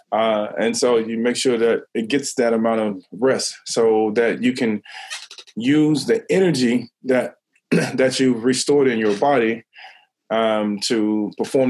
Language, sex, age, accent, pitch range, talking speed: English, male, 20-39, American, 105-140 Hz, 155 wpm